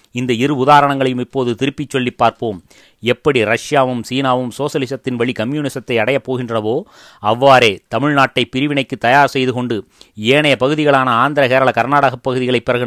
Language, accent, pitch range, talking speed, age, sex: Tamil, native, 120-140 Hz, 130 wpm, 30-49, male